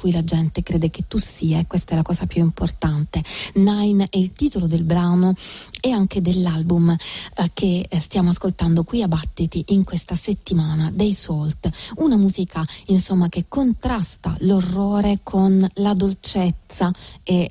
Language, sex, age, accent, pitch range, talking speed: Italian, female, 30-49, native, 170-210 Hz, 150 wpm